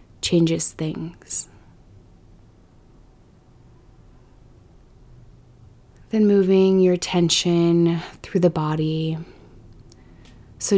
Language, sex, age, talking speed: English, female, 20-39, 55 wpm